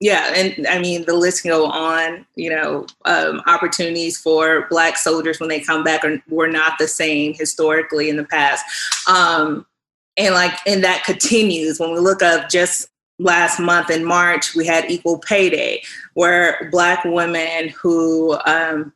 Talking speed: 165 wpm